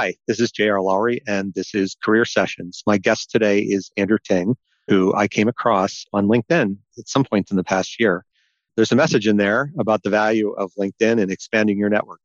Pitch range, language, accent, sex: 95-110 Hz, English, American, male